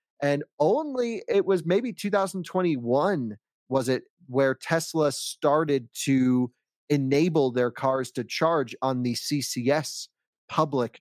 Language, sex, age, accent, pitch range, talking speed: English, male, 30-49, American, 125-155 Hz, 115 wpm